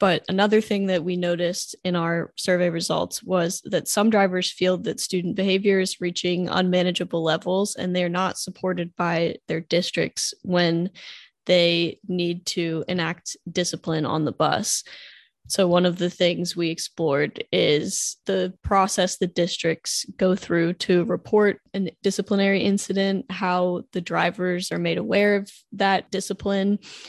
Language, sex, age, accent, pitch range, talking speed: English, female, 10-29, American, 175-195 Hz, 145 wpm